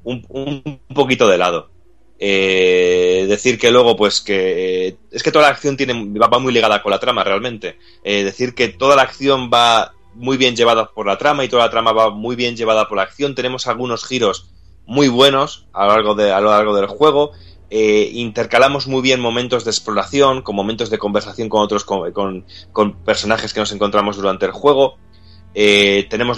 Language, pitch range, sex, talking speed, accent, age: Spanish, 105-125 Hz, male, 200 wpm, Spanish, 20-39